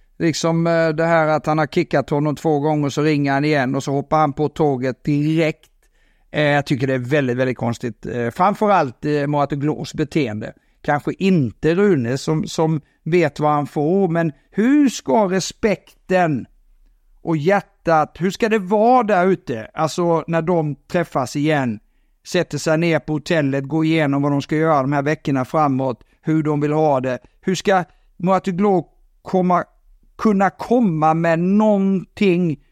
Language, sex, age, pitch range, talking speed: Swedish, male, 50-69, 145-185 Hz, 160 wpm